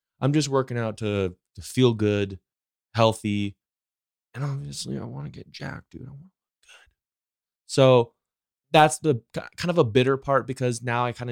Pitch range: 95-130 Hz